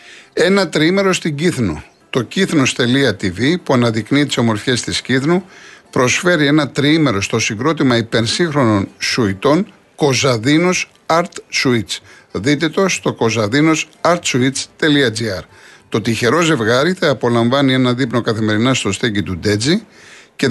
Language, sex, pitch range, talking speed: Greek, male, 115-160 Hz, 115 wpm